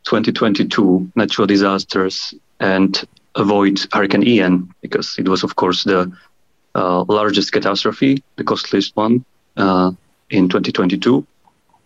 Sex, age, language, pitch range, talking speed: male, 30-49, English, 95-115 Hz, 110 wpm